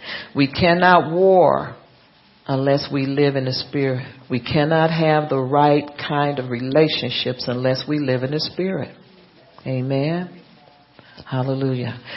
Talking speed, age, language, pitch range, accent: 125 wpm, 50-69, English, 120-150 Hz, American